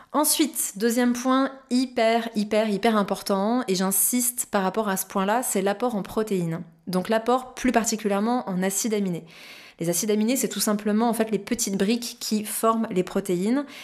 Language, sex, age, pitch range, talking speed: French, female, 20-39, 195-240 Hz, 175 wpm